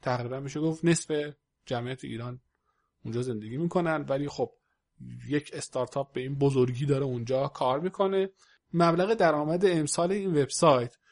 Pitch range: 130-160 Hz